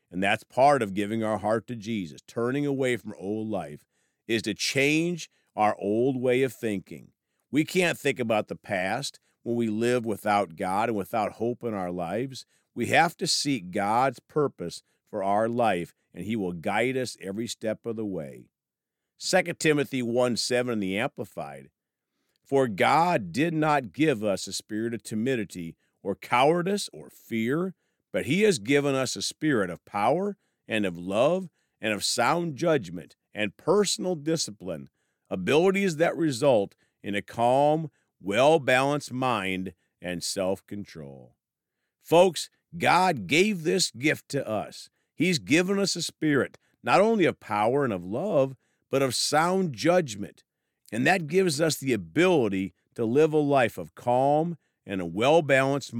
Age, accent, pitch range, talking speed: 50-69, American, 105-155 Hz, 155 wpm